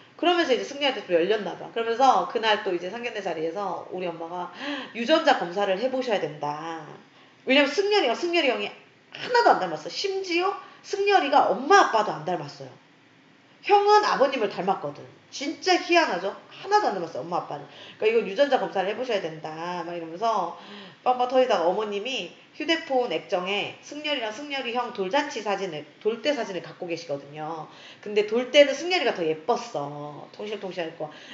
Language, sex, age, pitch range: Korean, female, 30-49, 175-275 Hz